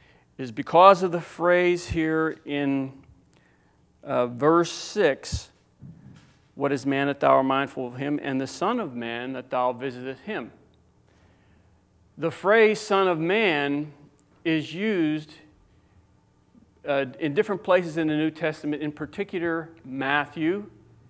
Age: 40-59